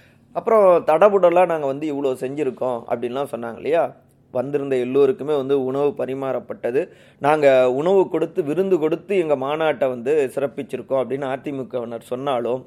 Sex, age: male, 30-49